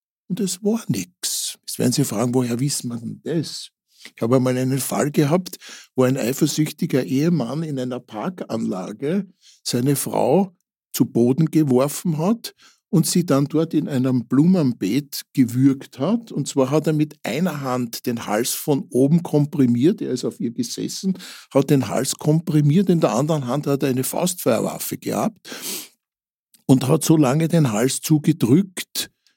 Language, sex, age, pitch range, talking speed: German, male, 60-79, 130-175 Hz, 155 wpm